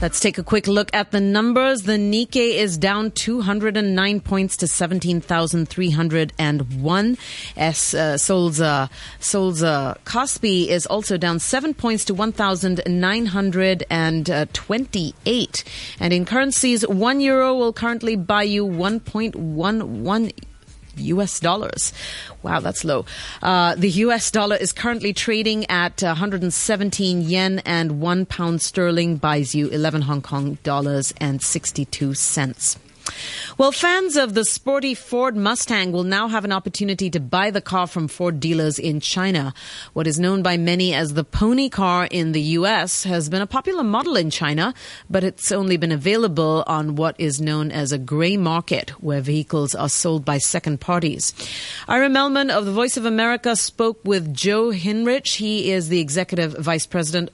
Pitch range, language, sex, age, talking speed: 160-215 Hz, English, female, 30-49, 150 wpm